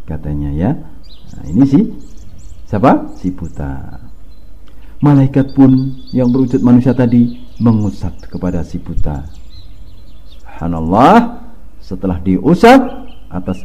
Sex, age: male, 50-69